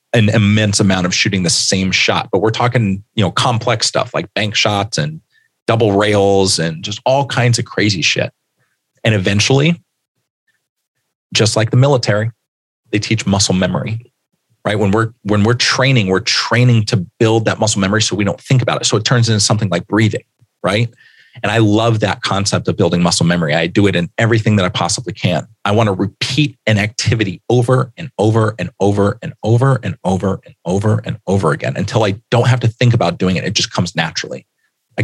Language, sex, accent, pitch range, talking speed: English, male, American, 100-120 Hz, 205 wpm